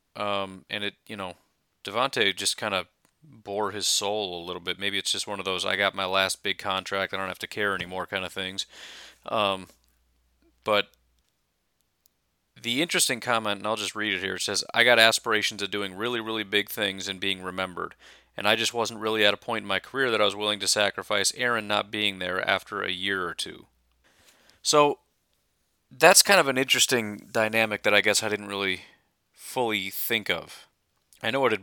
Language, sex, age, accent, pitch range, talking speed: English, male, 30-49, American, 95-115 Hz, 205 wpm